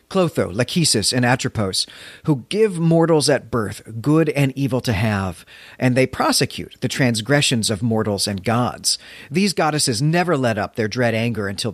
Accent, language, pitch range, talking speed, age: American, English, 110-145 Hz, 165 wpm, 40-59